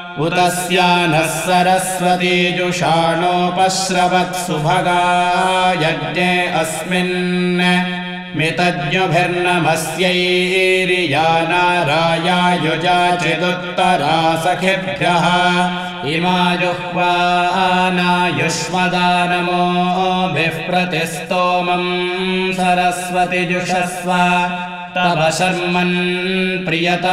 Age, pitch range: 60-79, 175-180 Hz